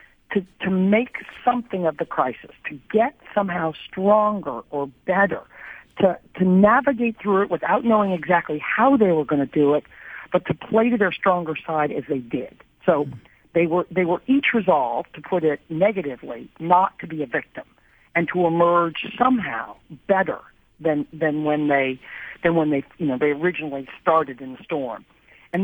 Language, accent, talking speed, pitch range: English, American, 175 wpm, 155-210 Hz